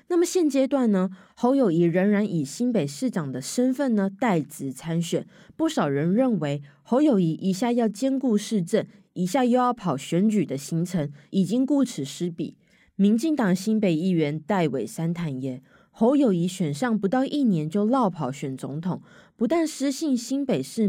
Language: Chinese